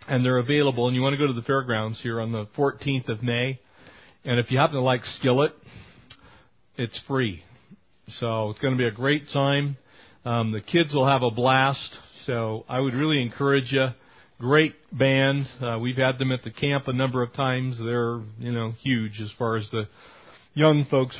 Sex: male